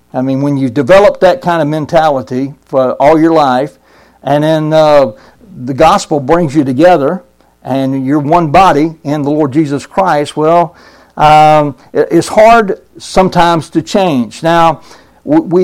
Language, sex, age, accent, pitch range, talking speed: English, male, 60-79, American, 145-185 Hz, 150 wpm